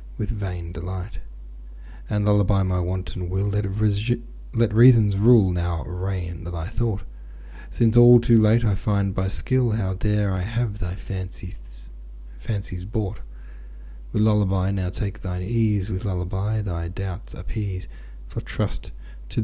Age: 30-49